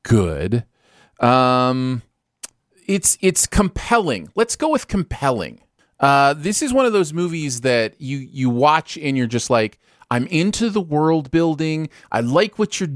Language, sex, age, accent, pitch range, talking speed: English, male, 30-49, American, 120-160 Hz, 155 wpm